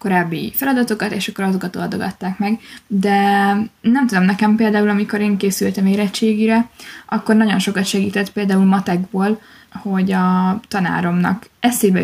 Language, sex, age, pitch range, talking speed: Hungarian, female, 20-39, 190-215 Hz, 130 wpm